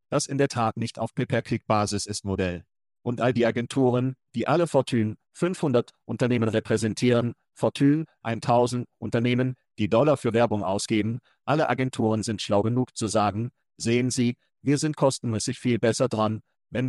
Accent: German